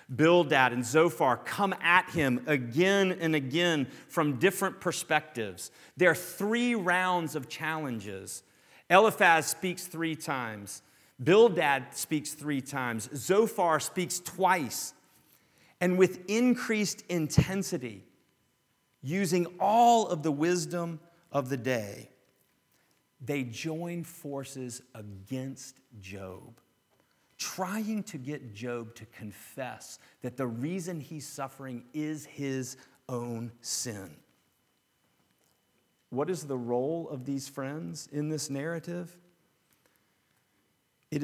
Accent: American